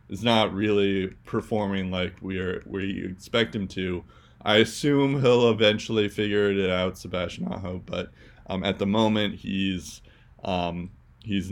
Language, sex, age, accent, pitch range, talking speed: English, male, 20-39, American, 100-115 Hz, 145 wpm